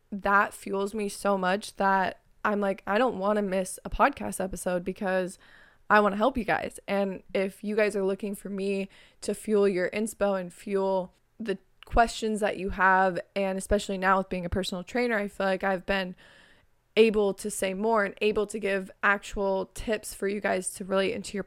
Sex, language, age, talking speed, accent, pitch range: female, English, 20-39, 200 wpm, American, 195-215 Hz